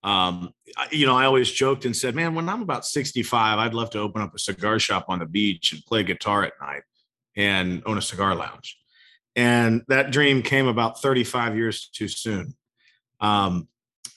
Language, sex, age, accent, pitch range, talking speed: English, male, 40-59, American, 110-130 Hz, 185 wpm